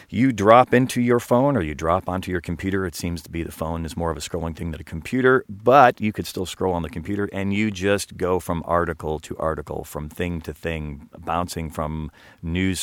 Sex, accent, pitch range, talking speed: male, American, 80-105 Hz, 230 wpm